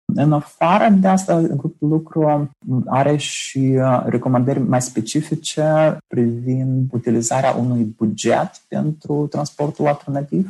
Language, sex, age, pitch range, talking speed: Romanian, male, 30-49, 110-130 Hz, 105 wpm